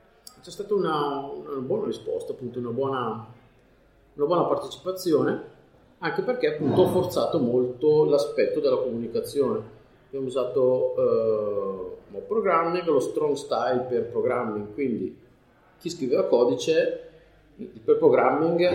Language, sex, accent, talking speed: Italian, male, native, 120 wpm